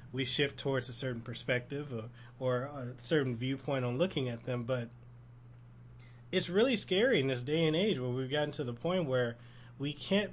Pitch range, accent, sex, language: 120-155 Hz, American, male, English